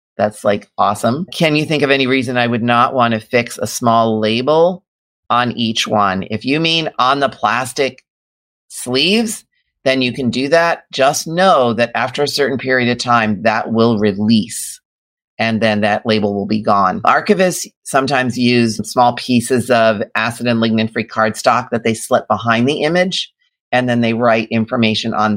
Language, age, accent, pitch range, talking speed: English, 40-59, American, 110-135 Hz, 175 wpm